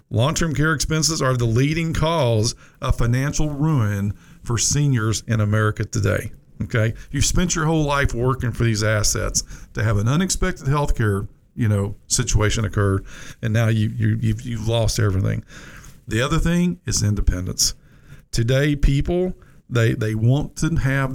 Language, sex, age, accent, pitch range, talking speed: English, male, 50-69, American, 110-140 Hz, 160 wpm